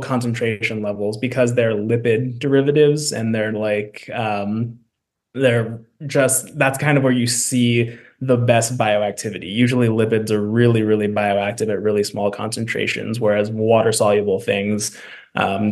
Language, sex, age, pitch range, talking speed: English, male, 20-39, 105-120 Hz, 135 wpm